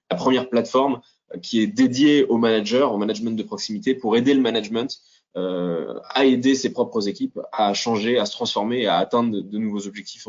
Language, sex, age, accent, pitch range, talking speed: French, male, 20-39, French, 100-120 Hz, 185 wpm